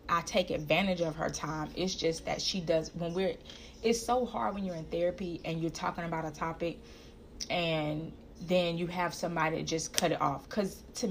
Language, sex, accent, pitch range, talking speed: English, female, American, 160-195 Hz, 205 wpm